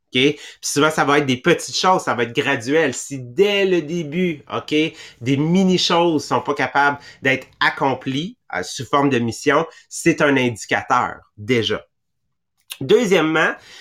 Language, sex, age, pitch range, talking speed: English, male, 30-49, 135-170 Hz, 155 wpm